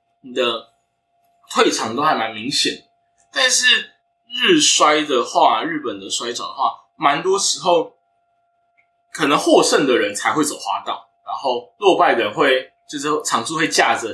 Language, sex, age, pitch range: Chinese, male, 20-39, 215-350 Hz